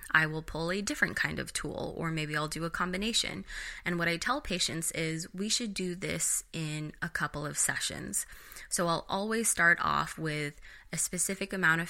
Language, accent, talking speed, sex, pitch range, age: English, American, 195 wpm, female, 160-195 Hz, 20-39